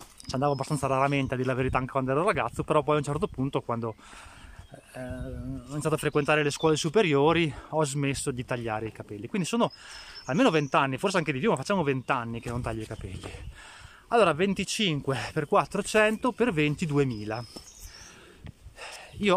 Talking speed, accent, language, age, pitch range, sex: 185 wpm, native, Italian, 20-39, 125-165 Hz, male